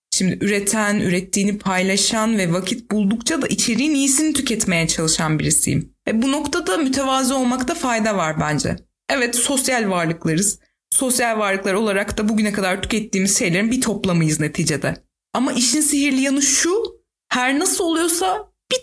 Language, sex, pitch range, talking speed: Turkish, female, 195-275 Hz, 140 wpm